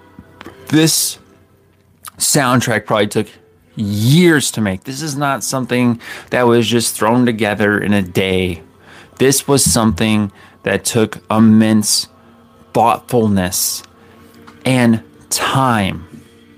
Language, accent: English, American